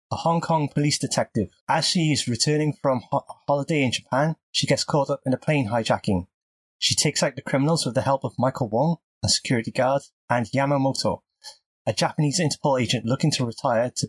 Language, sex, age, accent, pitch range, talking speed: English, male, 20-39, British, 115-145 Hz, 190 wpm